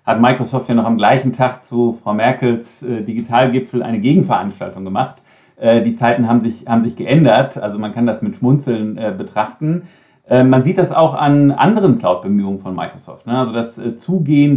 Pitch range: 115-130 Hz